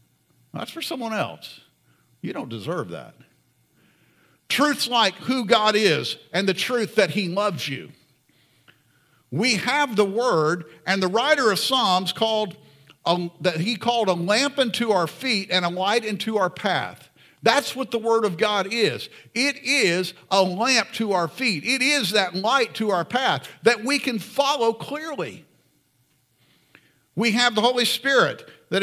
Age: 50-69